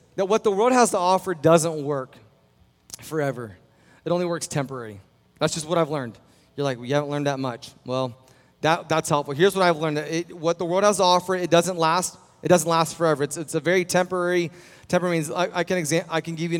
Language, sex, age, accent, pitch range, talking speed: English, male, 30-49, American, 140-175 Hz, 235 wpm